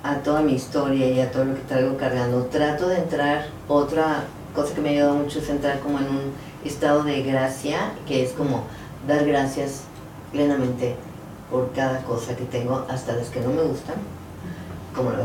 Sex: female